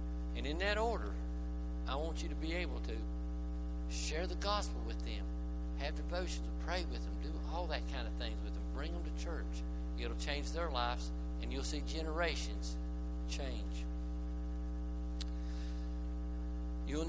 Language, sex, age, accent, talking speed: English, male, 60-79, American, 155 wpm